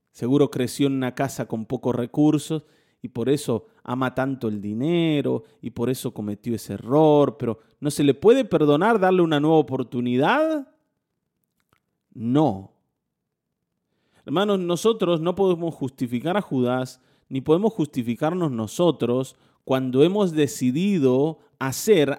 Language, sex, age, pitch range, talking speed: Spanish, male, 30-49, 135-200 Hz, 125 wpm